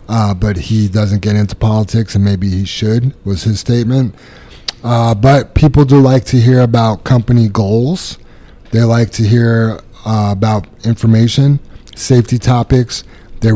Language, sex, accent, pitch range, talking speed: English, male, American, 100-120 Hz, 150 wpm